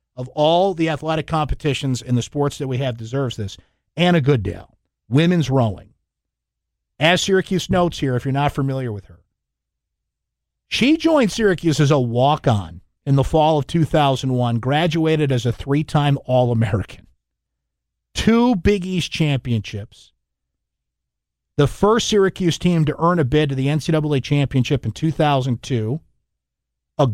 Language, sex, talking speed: English, male, 135 wpm